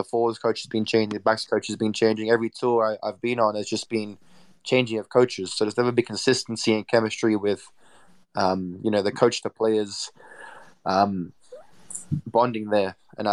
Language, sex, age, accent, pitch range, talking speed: English, male, 20-39, Australian, 105-115 Hz, 195 wpm